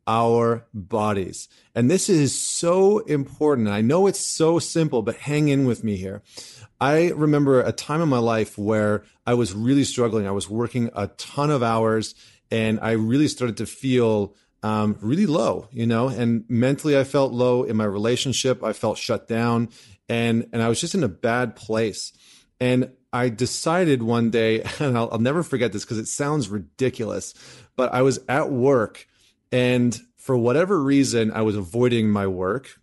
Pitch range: 110-130 Hz